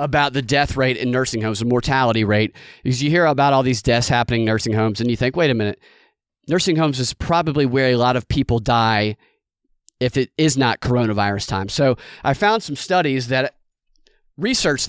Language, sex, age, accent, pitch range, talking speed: English, male, 30-49, American, 120-155 Hz, 200 wpm